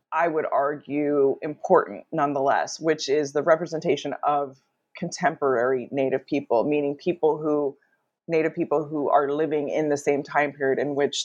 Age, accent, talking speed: 30-49, American, 150 wpm